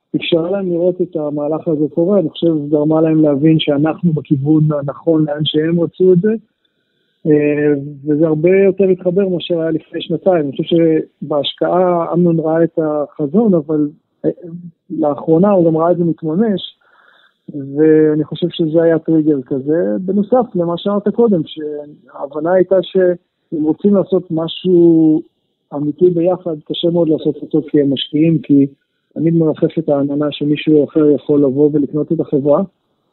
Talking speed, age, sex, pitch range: 145 wpm, 50-69, male, 145-170 Hz